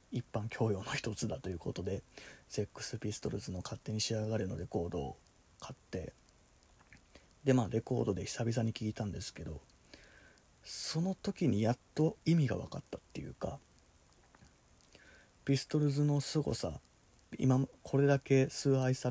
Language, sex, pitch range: Japanese, male, 110-135 Hz